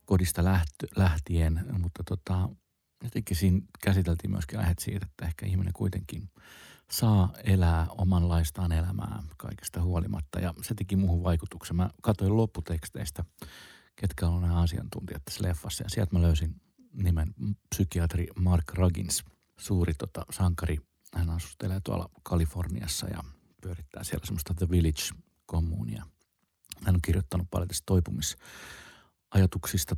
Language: Finnish